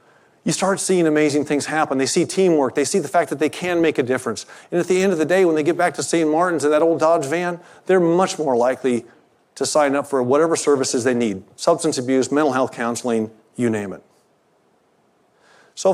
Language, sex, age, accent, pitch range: Korean, male, 40-59, American, 125-155 Hz